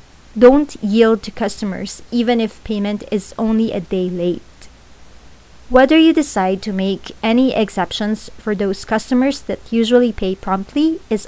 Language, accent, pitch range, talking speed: English, Filipino, 190-235 Hz, 145 wpm